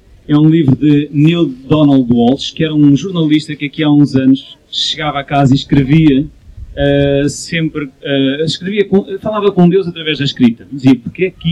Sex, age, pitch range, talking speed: male, 30-49, 135-160 Hz, 190 wpm